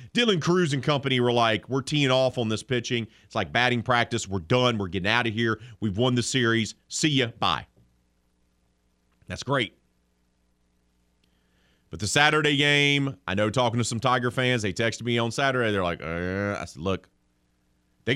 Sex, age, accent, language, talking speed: male, 30-49, American, English, 180 wpm